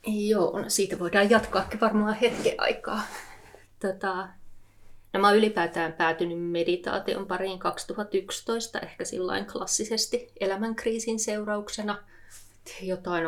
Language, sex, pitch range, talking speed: Finnish, female, 170-210 Hz, 95 wpm